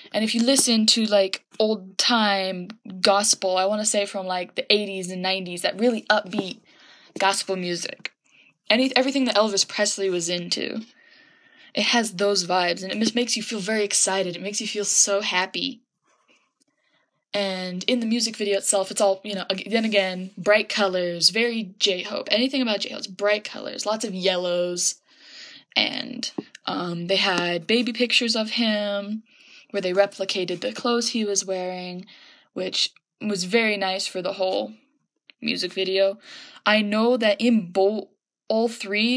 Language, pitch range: English, 195-235 Hz